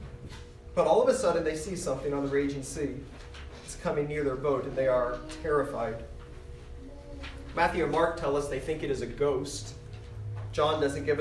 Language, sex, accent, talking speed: English, male, American, 185 wpm